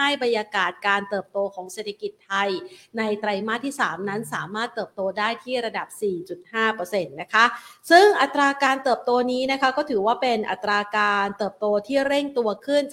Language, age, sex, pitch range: Thai, 30-49, female, 200-250 Hz